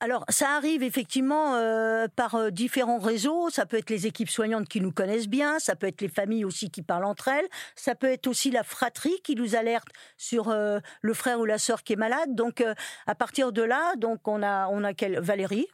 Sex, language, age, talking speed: female, French, 50-69, 235 wpm